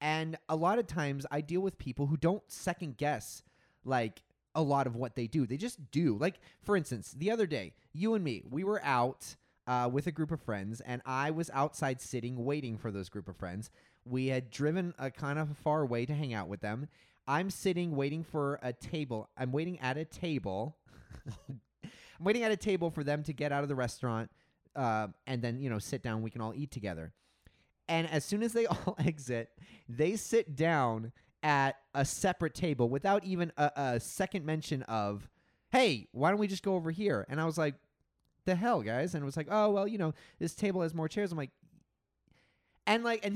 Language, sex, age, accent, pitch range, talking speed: English, male, 30-49, American, 130-180 Hz, 215 wpm